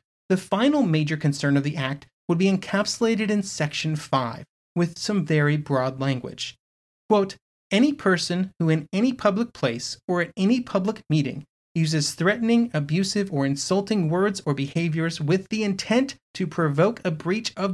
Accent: American